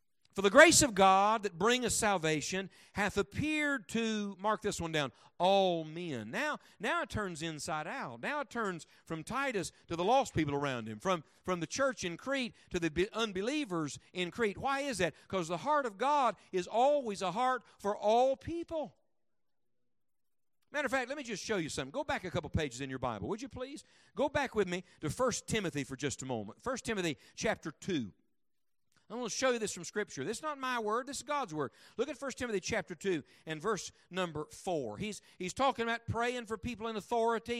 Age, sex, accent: 50-69, male, American